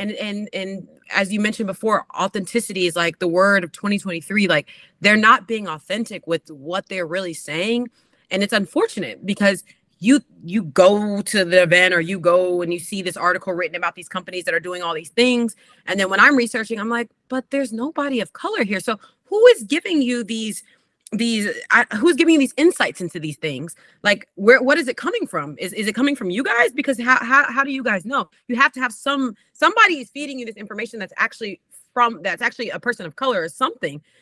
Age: 30-49